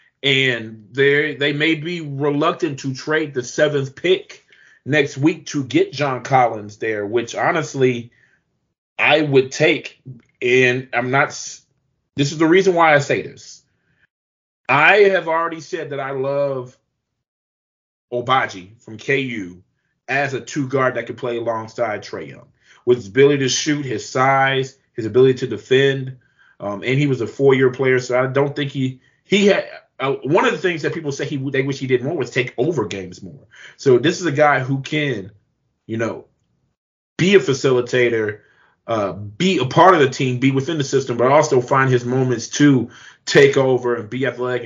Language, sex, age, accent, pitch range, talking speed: English, male, 30-49, American, 125-145 Hz, 175 wpm